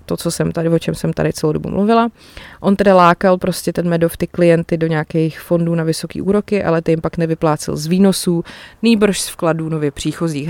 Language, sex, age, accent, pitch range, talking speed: Czech, female, 20-39, native, 160-190 Hz, 210 wpm